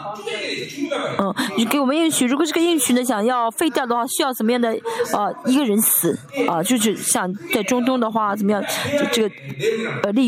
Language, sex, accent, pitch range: Chinese, female, native, 210-295 Hz